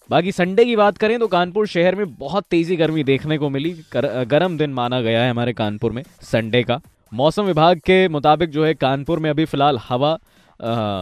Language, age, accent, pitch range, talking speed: Hindi, 20-39, native, 125-170 Hz, 205 wpm